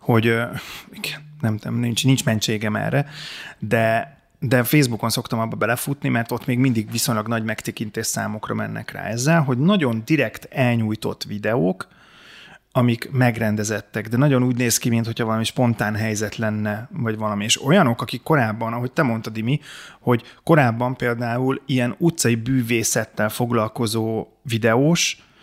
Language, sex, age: Hungarian, male, 30-49